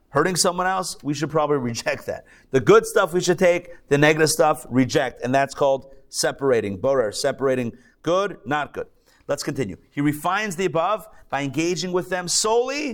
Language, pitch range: English, 135-180 Hz